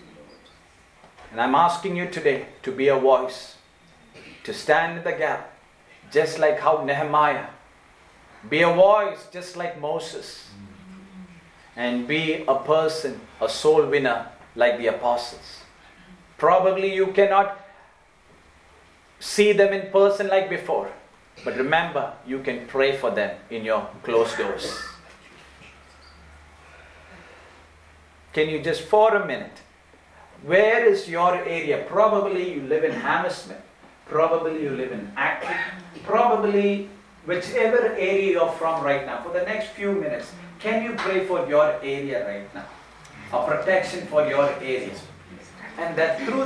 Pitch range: 135-200 Hz